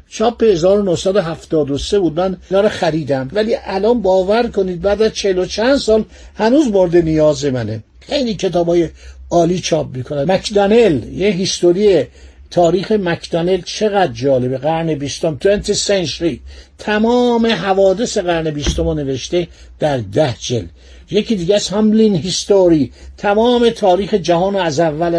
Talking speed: 140 wpm